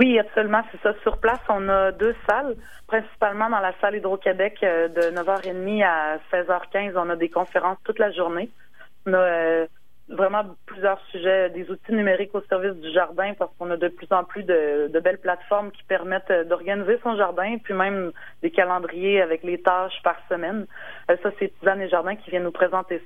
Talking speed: 185 wpm